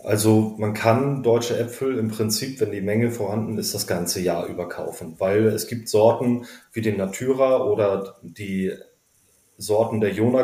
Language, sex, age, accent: German, male, 30-49, German